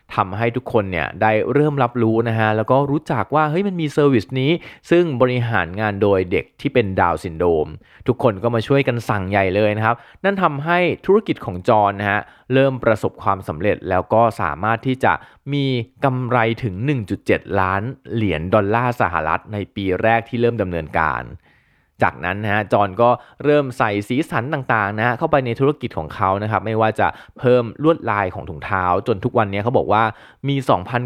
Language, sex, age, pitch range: Thai, male, 20-39, 100-130 Hz